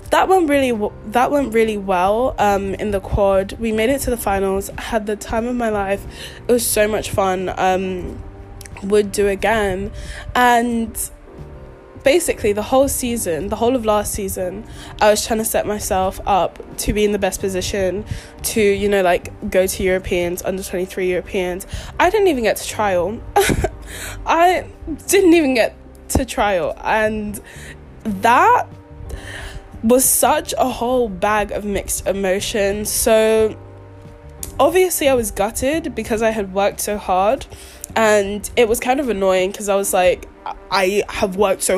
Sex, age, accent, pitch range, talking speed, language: female, 10-29, British, 190-225 Hz, 160 wpm, English